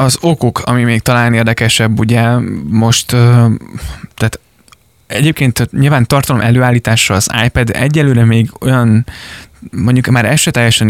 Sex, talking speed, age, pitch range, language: male, 125 wpm, 20-39, 100-120 Hz, Hungarian